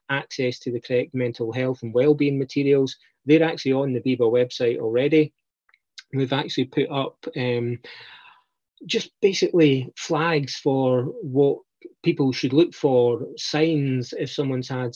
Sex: male